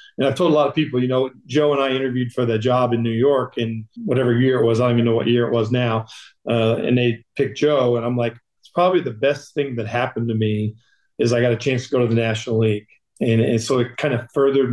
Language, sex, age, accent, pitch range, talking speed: English, male, 40-59, American, 120-140 Hz, 275 wpm